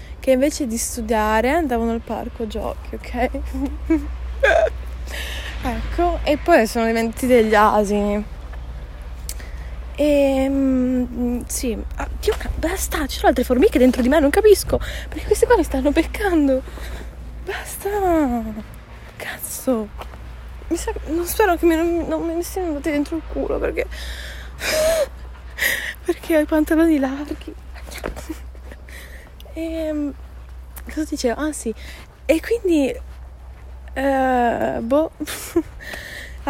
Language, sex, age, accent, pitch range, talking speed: Italian, female, 20-39, native, 210-300 Hz, 105 wpm